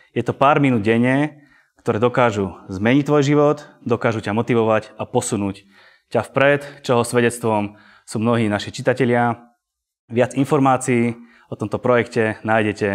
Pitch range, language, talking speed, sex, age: 105-125 Hz, Slovak, 135 wpm, male, 20-39